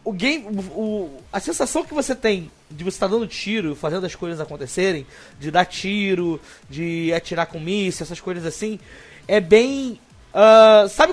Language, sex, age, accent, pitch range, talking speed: Portuguese, male, 20-39, Brazilian, 165-210 Hz, 165 wpm